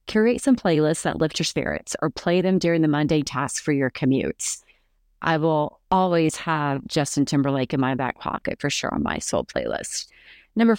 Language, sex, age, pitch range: English, female, 40-59, 150-200 Hz